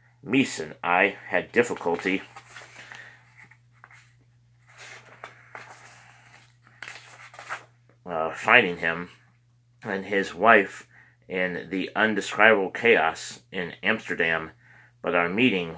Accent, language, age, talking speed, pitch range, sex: American, English, 30-49, 75 wpm, 90-120 Hz, male